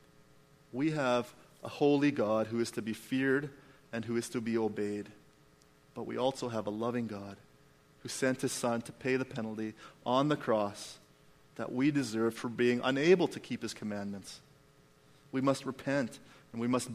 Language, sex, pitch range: English, male, 125-155 Hz